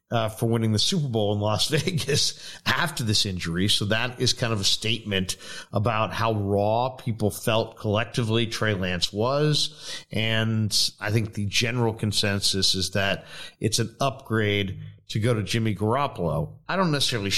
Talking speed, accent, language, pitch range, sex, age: 160 wpm, American, English, 100-130 Hz, male, 50-69